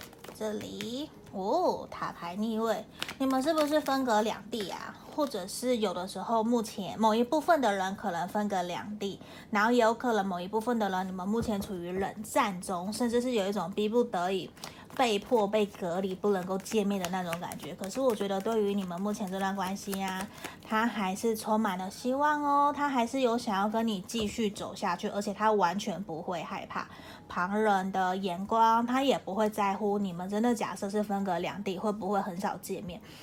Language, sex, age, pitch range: Chinese, female, 20-39, 195-230 Hz